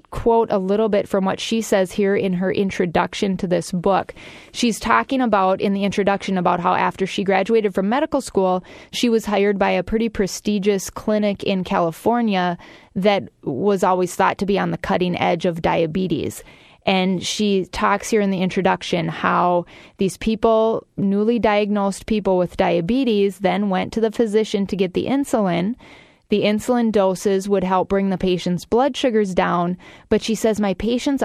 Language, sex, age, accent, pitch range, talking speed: English, female, 20-39, American, 190-225 Hz, 175 wpm